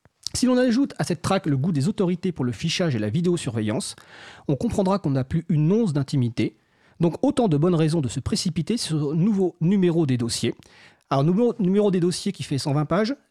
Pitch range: 130-175 Hz